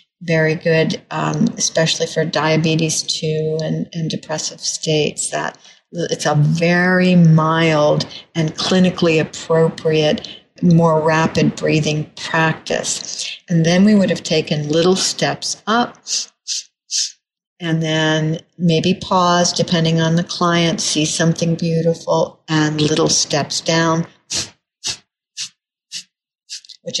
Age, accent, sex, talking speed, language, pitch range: 60-79, American, female, 105 wpm, English, 155-175 Hz